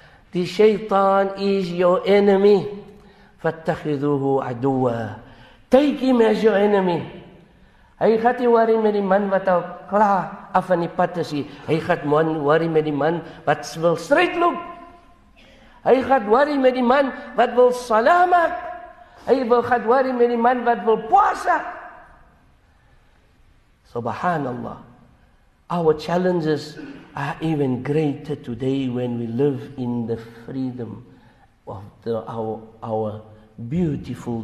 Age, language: 50-69, English